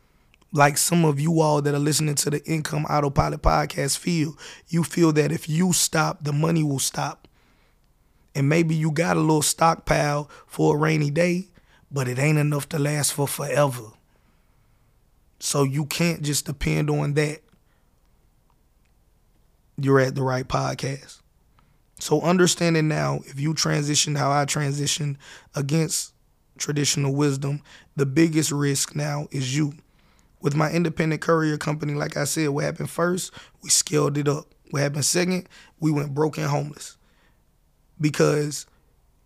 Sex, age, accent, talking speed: male, 20-39, American, 150 wpm